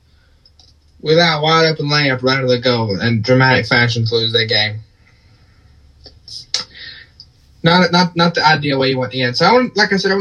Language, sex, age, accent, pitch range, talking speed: English, male, 20-39, American, 115-140 Hz, 195 wpm